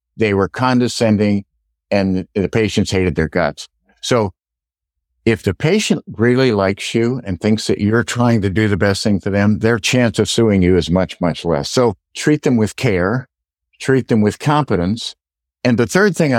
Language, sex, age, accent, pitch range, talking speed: English, male, 50-69, American, 85-115 Hz, 185 wpm